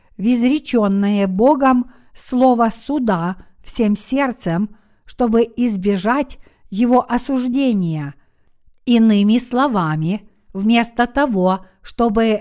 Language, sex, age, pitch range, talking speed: Russian, female, 50-69, 205-245 Hz, 75 wpm